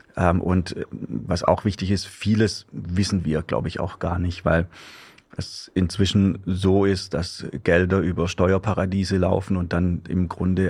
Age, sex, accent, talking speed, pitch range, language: 30-49, male, German, 150 wpm, 85-95 Hz, German